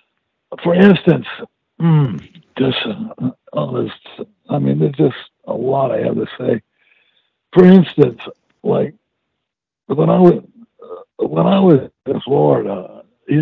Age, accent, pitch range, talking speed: 60-79, American, 145-195 Hz, 130 wpm